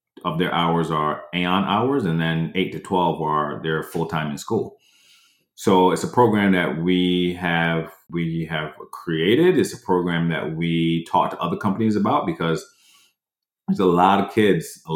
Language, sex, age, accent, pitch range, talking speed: English, male, 30-49, American, 80-95 Hz, 175 wpm